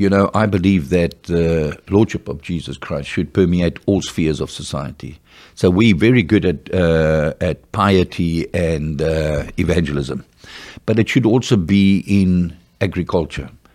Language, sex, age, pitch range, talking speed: English, male, 60-79, 85-105 Hz, 155 wpm